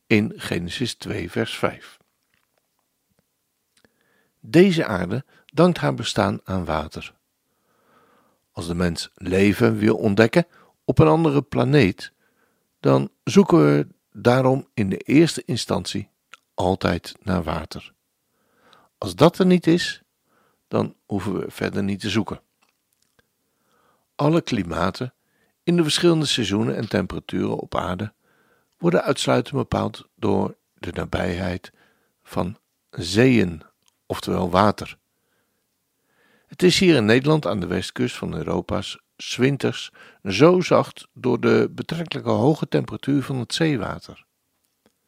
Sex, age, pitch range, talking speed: male, 60-79, 90-155 Hz, 115 wpm